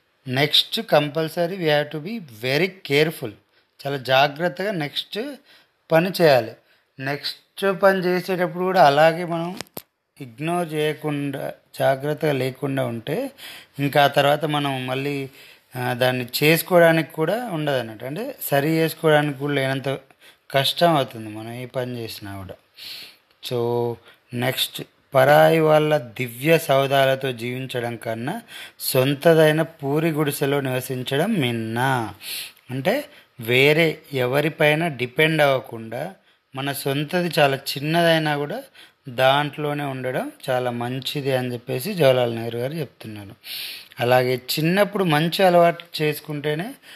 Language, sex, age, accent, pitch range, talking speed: Telugu, male, 30-49, native, 130-160 Hz, 105 wpm